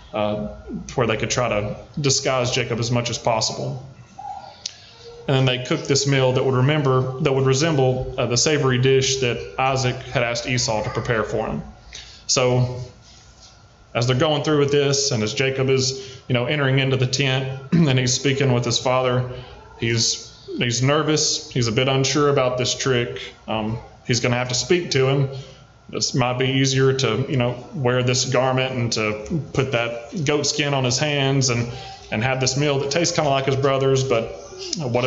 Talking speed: 190 wpm